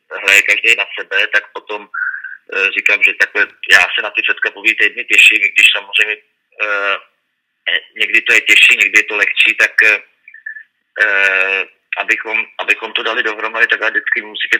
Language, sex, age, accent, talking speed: Czech, male, 30-49, native, 165 wpm